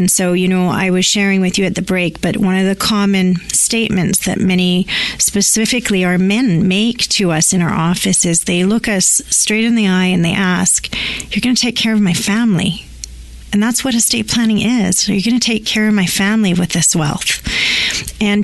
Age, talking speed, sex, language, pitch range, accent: 30-49, 210 wpm, female, English, 180-210 Hz, American